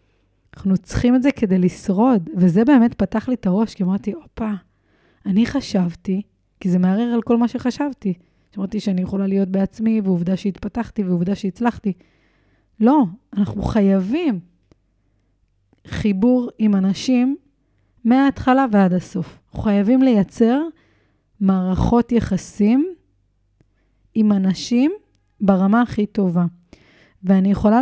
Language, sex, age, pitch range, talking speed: Hebrew, female, 30-49, 185-240 Hz, 115 wpm